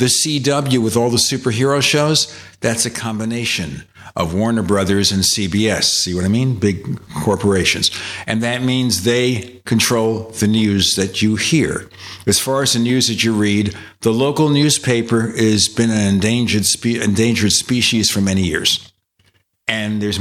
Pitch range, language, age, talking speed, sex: 100-120 Hz, English, 60-79, 155 wpm, male